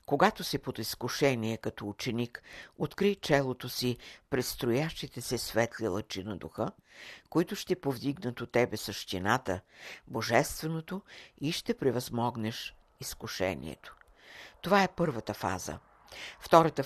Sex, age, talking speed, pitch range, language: female, 60-79, 110 wpm, 110-145 Hz, Bulgarian